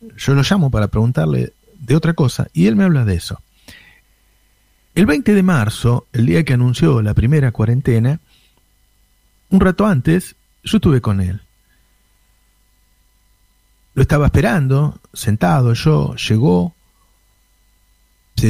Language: Spanish